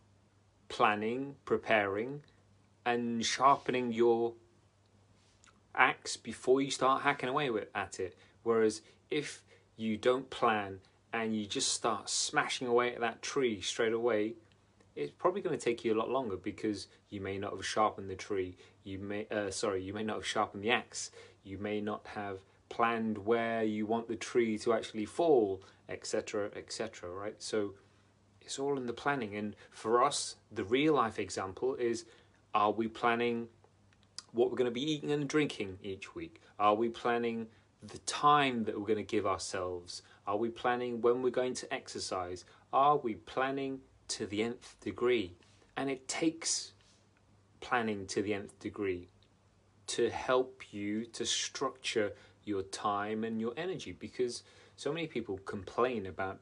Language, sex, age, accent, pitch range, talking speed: English, male, 30-49, British, 100-120 Hz, 160 wpm